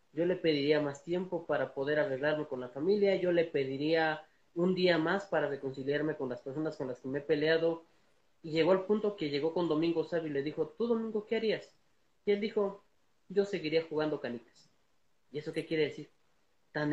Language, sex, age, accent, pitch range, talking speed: Spanish, male, 30-49, Mexican, 140-175 Hz, 200 wpm